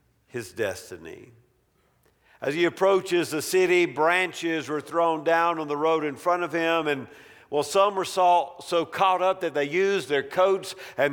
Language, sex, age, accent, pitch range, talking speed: English, male, 50-69, American, 135-195 Hz, 175 wpm